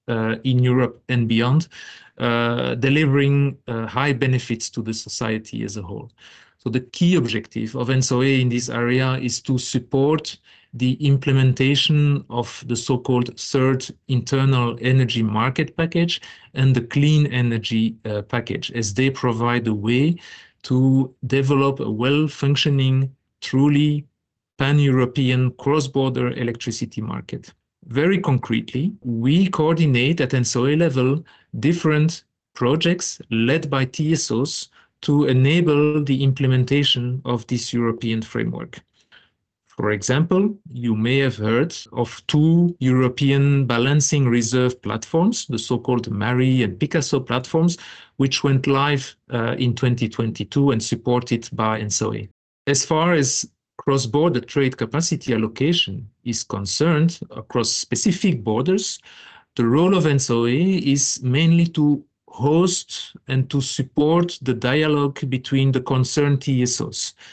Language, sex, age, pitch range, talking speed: Ukrainian, male, 40-59, 120-150 Hz, 120 wpm